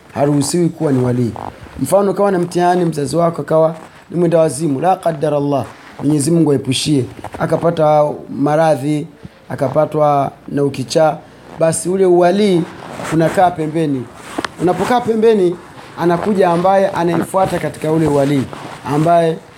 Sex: male